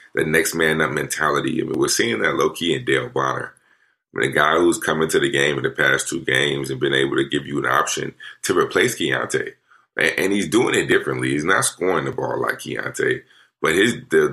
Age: 30-49